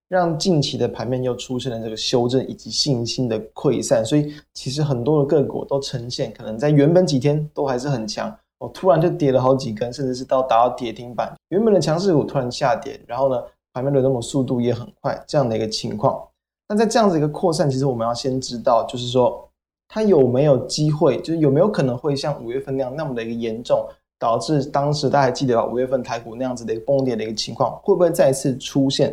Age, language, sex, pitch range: 20-39, Chinese, male, 125-150 Hz